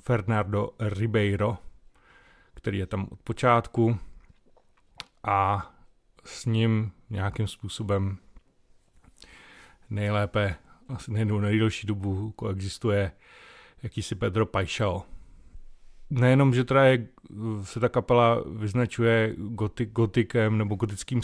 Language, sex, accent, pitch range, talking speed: Czech, male, native, 95-115 Hz, 85 wpm